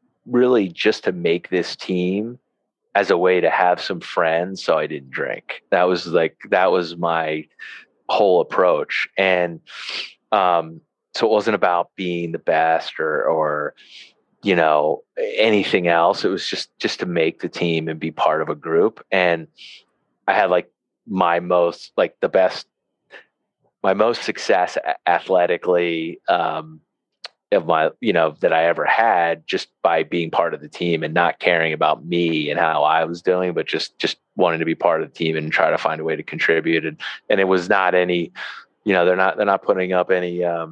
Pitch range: 85-95 Hz